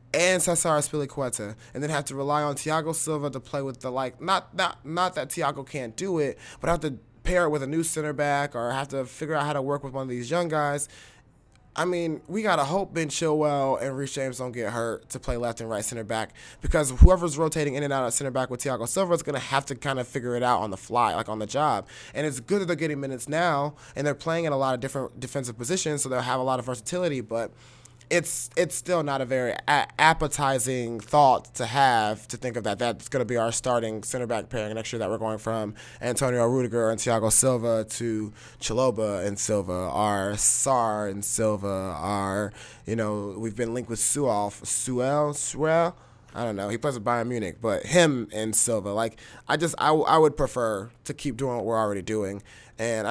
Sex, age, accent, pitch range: male, 20-39, American, 115-145 Hz